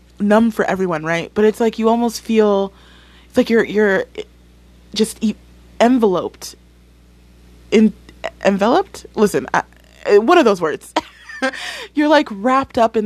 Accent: American